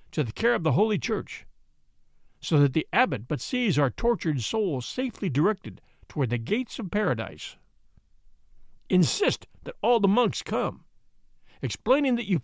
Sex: male